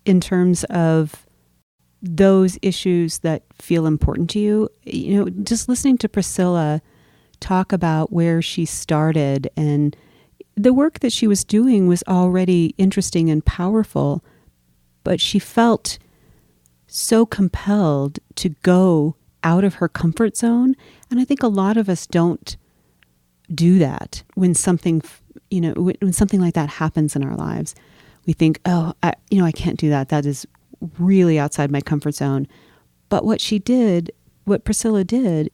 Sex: female